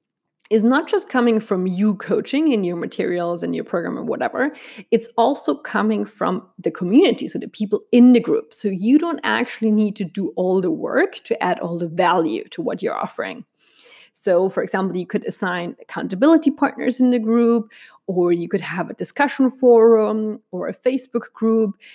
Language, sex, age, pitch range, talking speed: English, female, 30-49, 195-260 Hz, 185 wpm